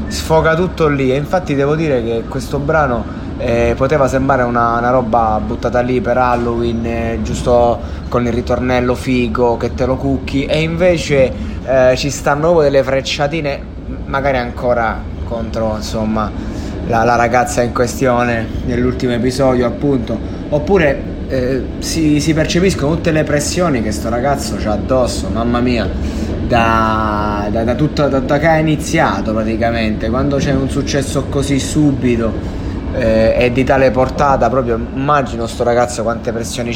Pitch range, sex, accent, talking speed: 115-145 Hz, male, native, 150 wpm